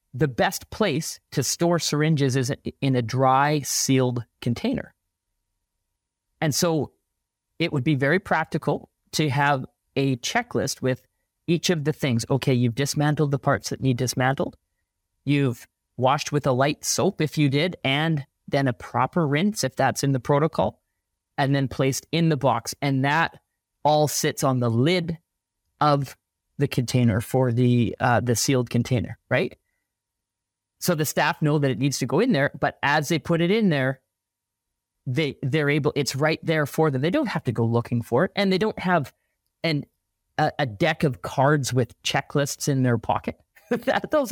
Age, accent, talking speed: 40-59, American, 175 wpm